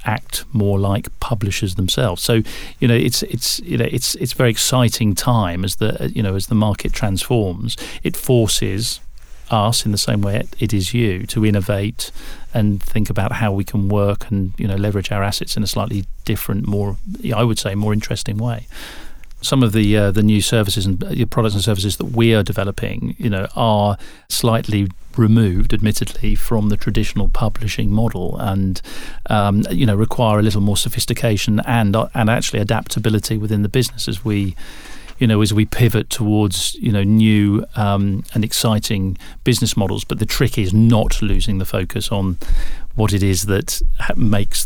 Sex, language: male, English